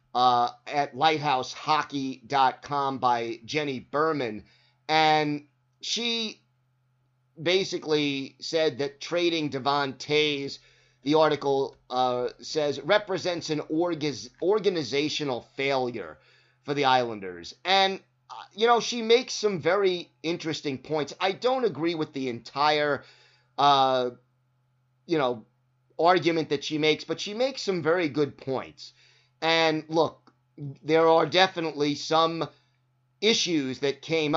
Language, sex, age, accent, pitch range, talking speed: English, male, 30-49, American, 130-160 Hz, 110 wpm